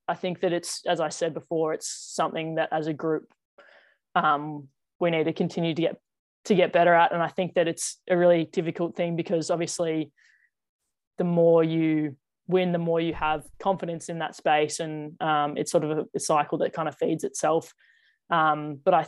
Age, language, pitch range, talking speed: 20-39, English, 150-170 Hz, 200 wpm